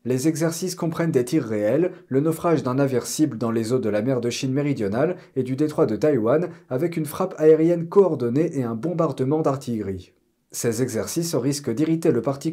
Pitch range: 125-165 Hz